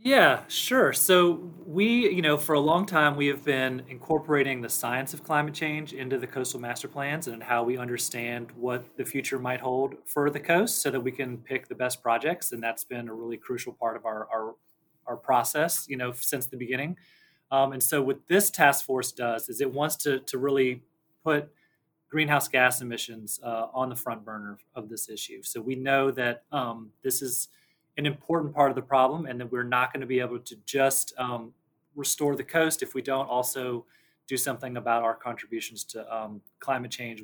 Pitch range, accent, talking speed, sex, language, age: 120-145 Hz, American, 205 wpm, male, English, 30-49